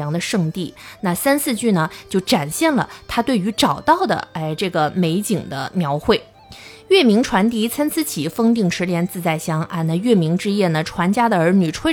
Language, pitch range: Chinese, 170-240 Hz